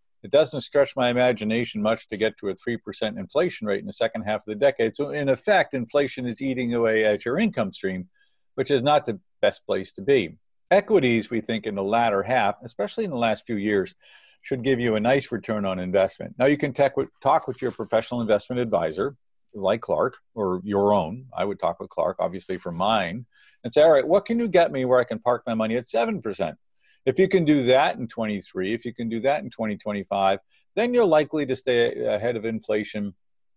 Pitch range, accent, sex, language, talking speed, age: 105-135 Hz, American, male, English, 215 wpm, 50-69